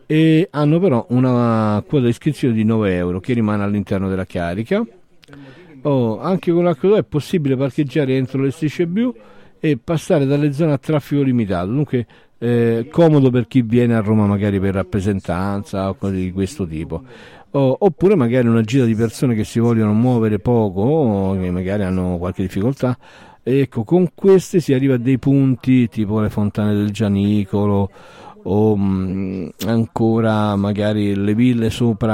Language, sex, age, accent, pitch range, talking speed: Italian, male, 50-69, native, 100-135 Hz, 165 wpm